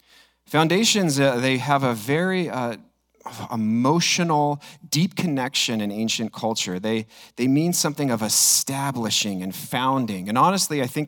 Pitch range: 105-135 Hz